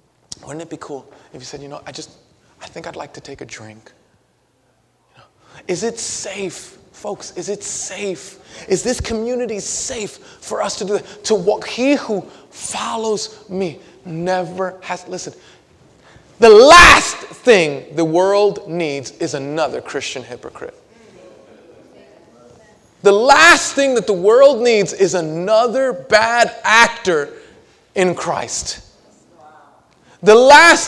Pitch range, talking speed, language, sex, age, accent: 160-225 Hz, 140 wpm, English, male, 30-49, American